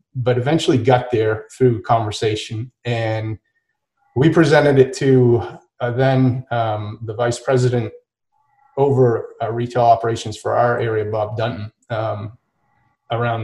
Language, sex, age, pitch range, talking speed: English, male, 30-49, 115-130 Hz, 125 wpm